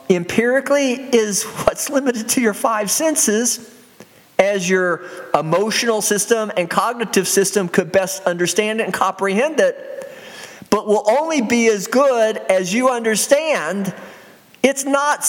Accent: American